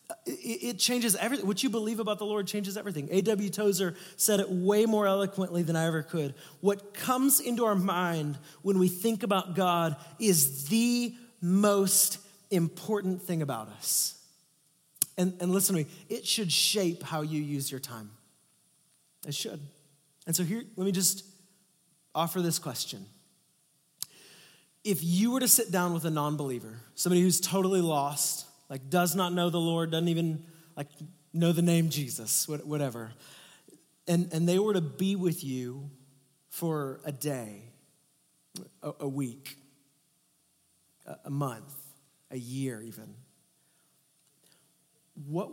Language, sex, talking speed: English, male, 145 wpm